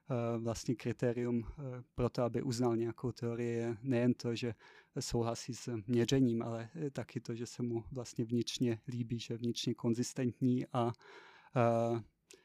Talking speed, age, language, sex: 150 wpm, 30-49, Czech, male